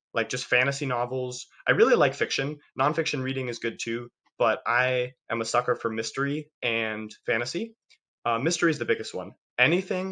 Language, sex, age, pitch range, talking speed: English, male, 20-39, 115-150 Hz, 170 wpm